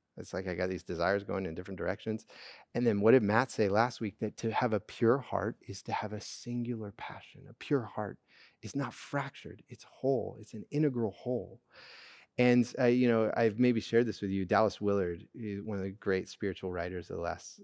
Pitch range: 100-135 Hz